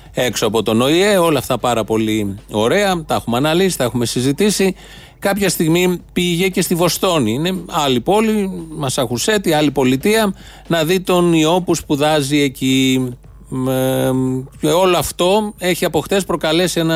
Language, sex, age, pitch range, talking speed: Greek, male, 30-49, 130-175 Hz, 140 wpm